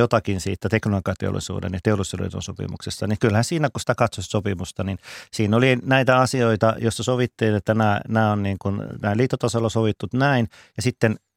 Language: Finnish